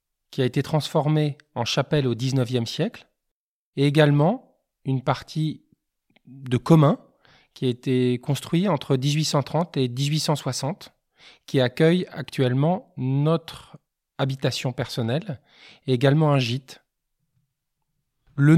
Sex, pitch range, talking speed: male, 125-155 Hz, 110 wpm